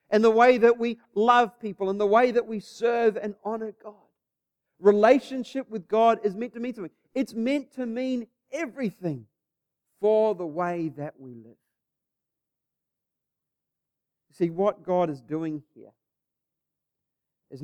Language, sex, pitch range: English, male, 145-215 Hz